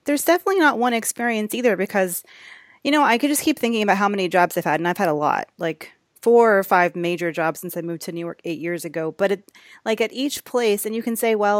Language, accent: English, American